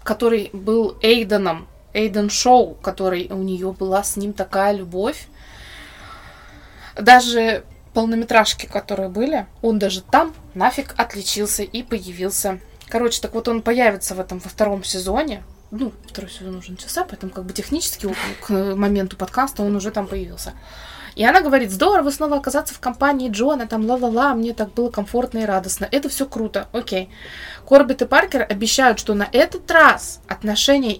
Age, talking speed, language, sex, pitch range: 20-39, 160 wpm, Russian, female, 200-250 Hz